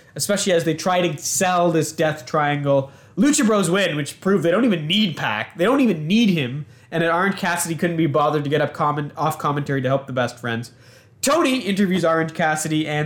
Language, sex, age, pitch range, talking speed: English, male, 20-39, 140-195 Hz, 215 wpm